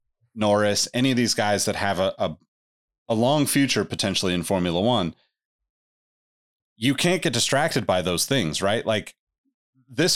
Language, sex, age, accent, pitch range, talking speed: English, male, 30-49, American, 105-130 Hz, 155 wpm